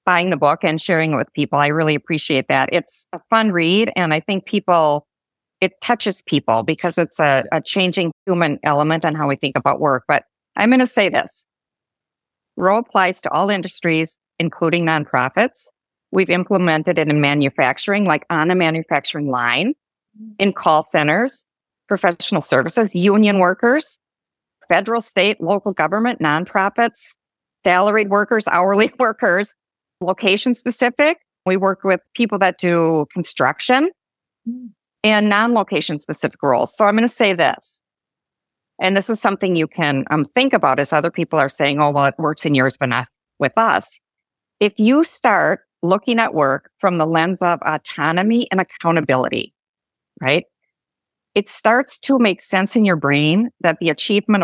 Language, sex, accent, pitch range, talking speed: English, female, American, 155-210 Hz, 160 wpm